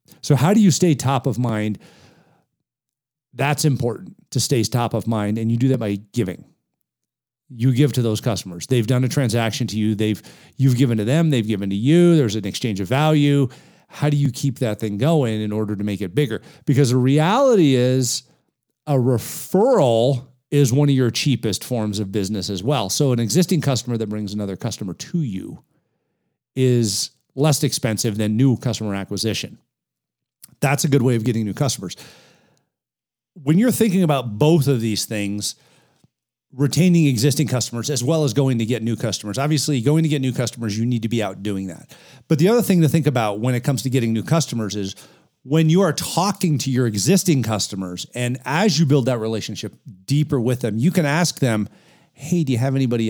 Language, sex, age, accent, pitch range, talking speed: English, male, 50-69, American, 110-145 Hz, 195 wpm